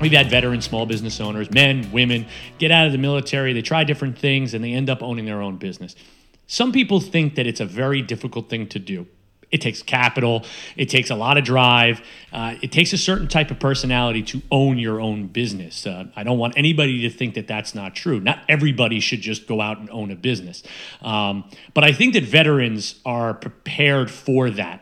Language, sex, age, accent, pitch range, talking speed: English, male, 30-49, American, 115-160 Hz, 215 wpm